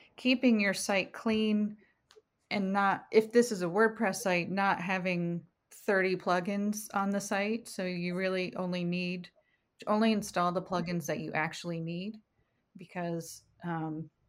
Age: 30-49